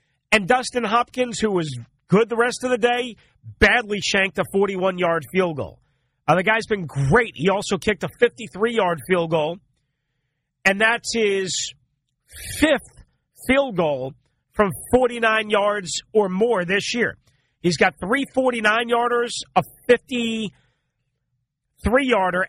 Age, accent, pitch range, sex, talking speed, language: 40-59, American, 145-240 Hz, male, 125 wpm, English